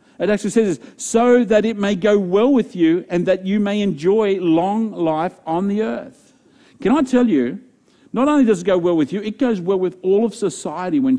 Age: 50-69